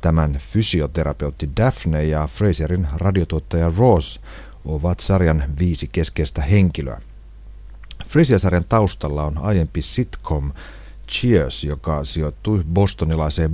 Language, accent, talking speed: Finnish, native, 95 wpm